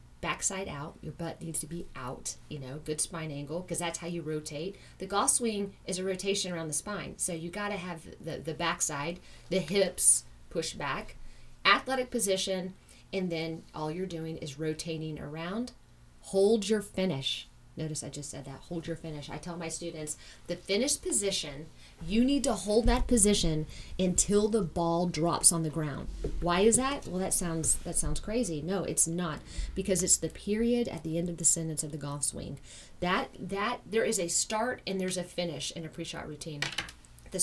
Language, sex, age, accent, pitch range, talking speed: English, female, 30-49, American, 155-195 Hz, 195 wpm